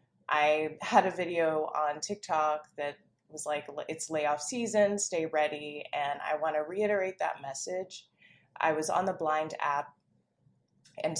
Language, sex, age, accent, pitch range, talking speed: English, female, 20-39, American, 155-195 Hz, 150 wpm